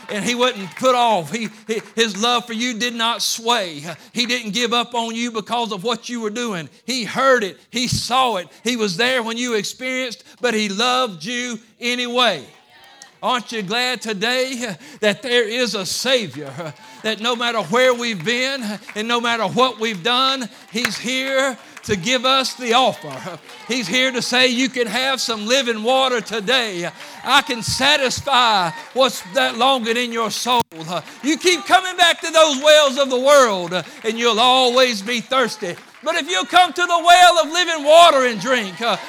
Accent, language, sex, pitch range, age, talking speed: American, English, male, 220-260 Hz, 50-69, 180 wpm